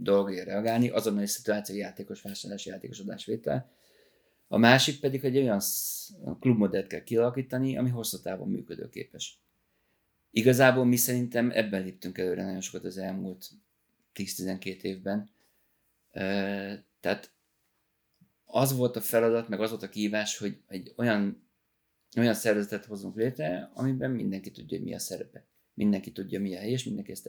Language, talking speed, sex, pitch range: Hungarian, 145 wpm, male, 95-115 Hz